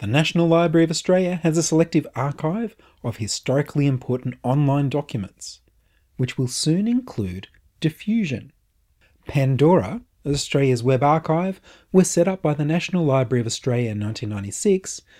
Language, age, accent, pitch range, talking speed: English, 30-49, Australian, 115-165 Hz, 135 wpm